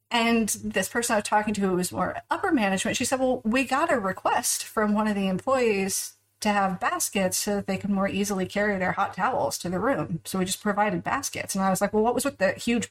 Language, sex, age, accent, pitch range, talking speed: English, female, 40-59, American, 185-230 Hz, 255 wpm